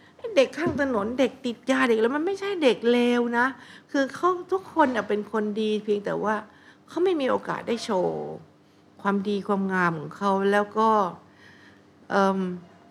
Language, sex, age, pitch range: Thai, female, 60-79, 170-250 Hz